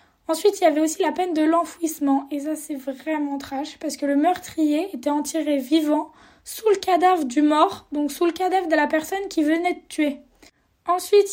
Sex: female